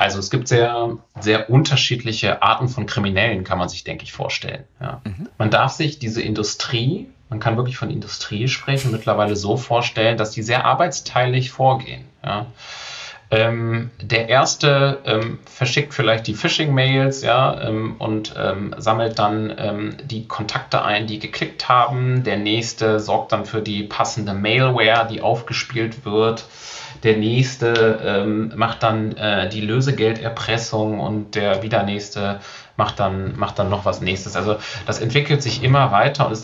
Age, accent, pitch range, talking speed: 30-49, German, 110-130 Hz, 150 wpm